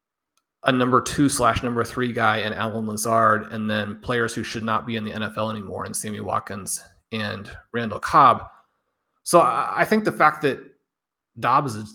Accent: American